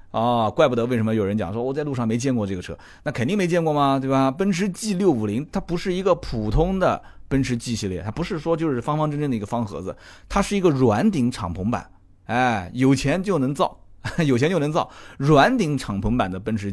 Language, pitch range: Chinese, 100-155 Hz